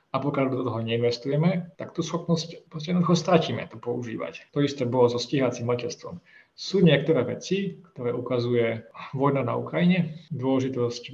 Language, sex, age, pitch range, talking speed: Slovak, male, 20-39, 125-150 Hz, 150 wpm